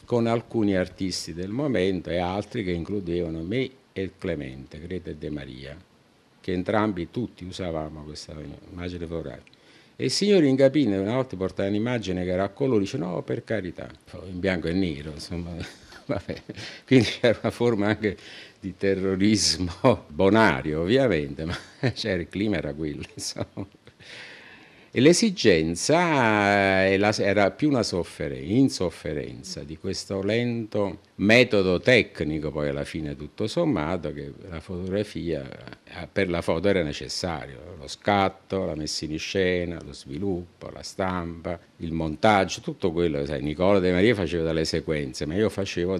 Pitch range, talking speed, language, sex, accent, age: 80-105 Hz, 140 wpm, Italian, male, native, 50-69